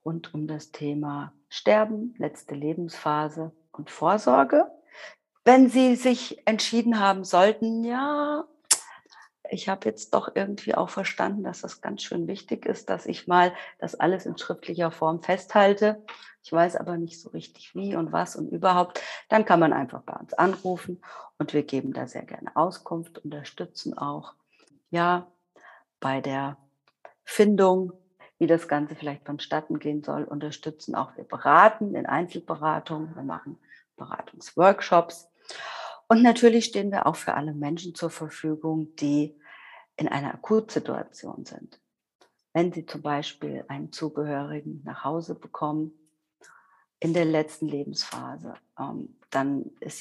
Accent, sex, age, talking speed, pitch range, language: German, female, 50-69, 140 wpm, 150-190 Hz, German